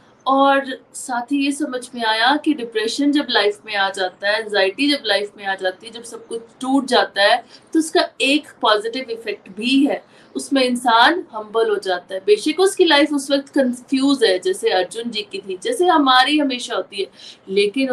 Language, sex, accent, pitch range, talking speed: Hindi, female, native, 215-295 Hz, 200 wpm